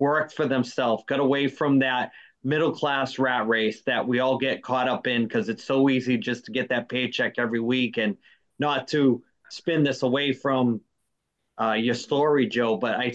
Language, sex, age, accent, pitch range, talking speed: English, male, 30-49, American, 130-160 Hz, 185 wpm